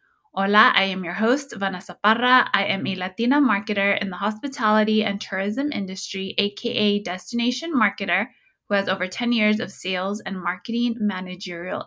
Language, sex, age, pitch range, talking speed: English, female, 20-39, 200-240 Hz, 155 wpm